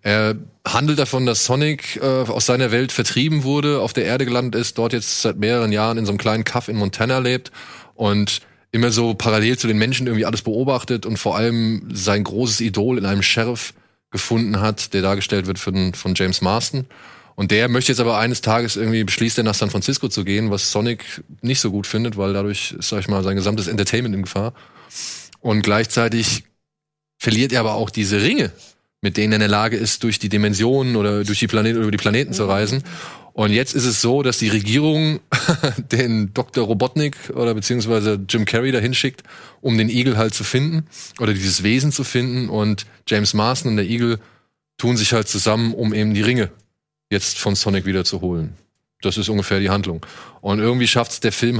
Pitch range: 105-125 Hz